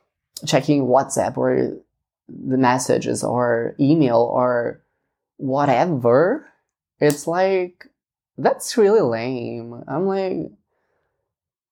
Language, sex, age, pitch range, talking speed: English, male, 20-39, 120-150 Hz, 80 wpm